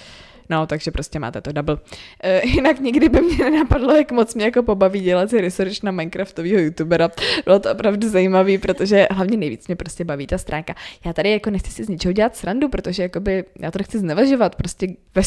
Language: Czech